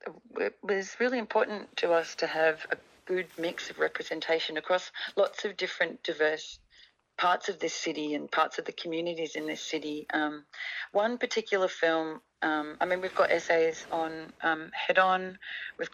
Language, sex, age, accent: English, female, 40-59, Australian